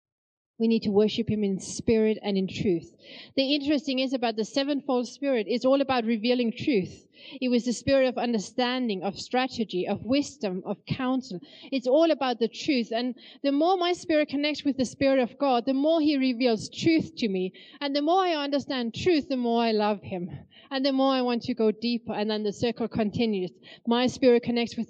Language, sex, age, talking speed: English, female, 30-49, 205 wpm